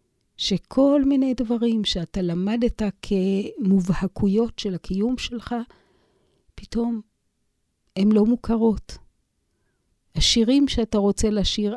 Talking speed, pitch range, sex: 85 wpm, 185-235 Hz, female